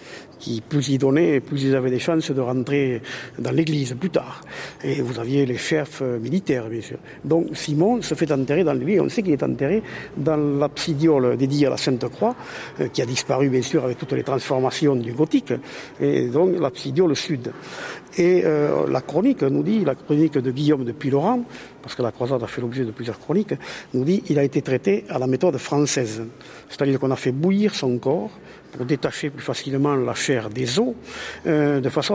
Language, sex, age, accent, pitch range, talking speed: French, male, 50-69, French, 125-160 Hz, 200 wpm